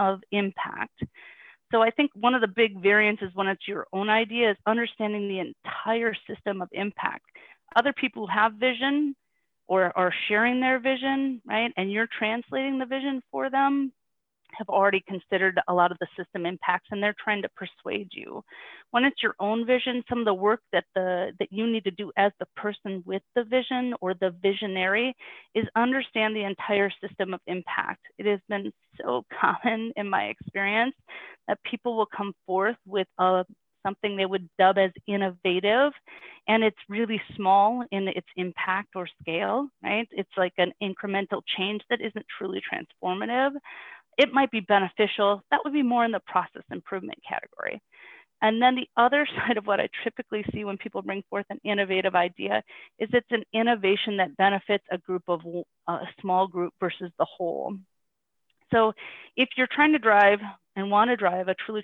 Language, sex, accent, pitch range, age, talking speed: English, female, American, 190-240 Hz, 30-49, 180 wpm